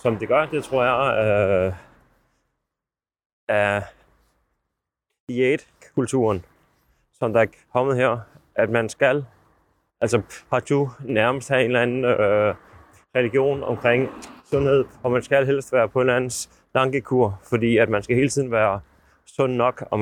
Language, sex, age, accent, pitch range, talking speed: Danish, male, 30-49, native, 110-130 Hz, 145 wpm